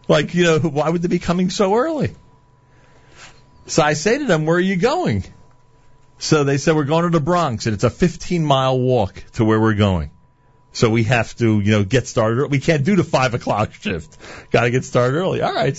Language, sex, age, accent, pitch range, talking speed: English, male, 40-59, American, 120-170 Hz, 220 wpm